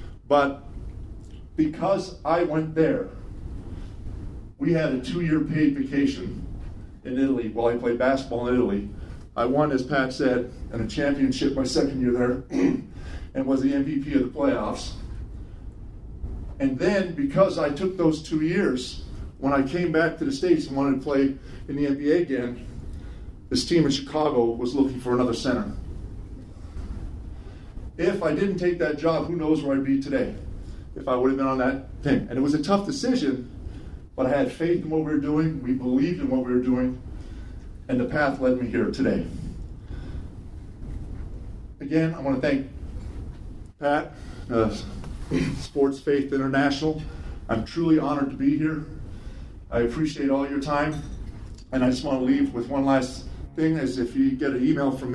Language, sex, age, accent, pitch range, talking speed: English, male, 50-69, American, 105-150 Hz, 170 wpm